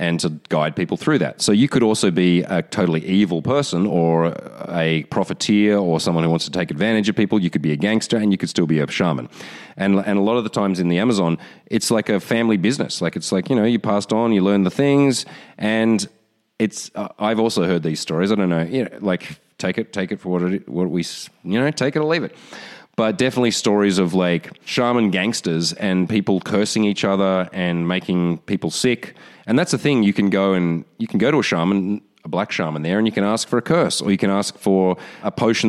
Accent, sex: Australian, male